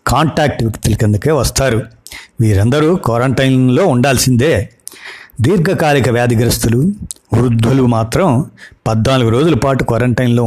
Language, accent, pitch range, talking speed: Telugu, native, 115-140 Hz, 85 wpm